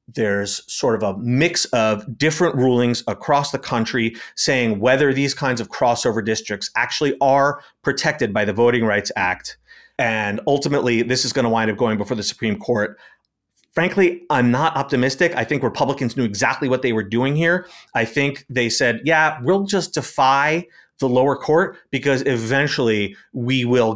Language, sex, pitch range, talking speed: English, male, 115-140 Hz, 170 wpm